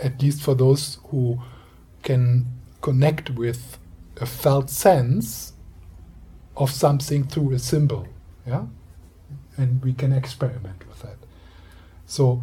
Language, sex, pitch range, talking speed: English, male, 85-130 Hz, 110 wpm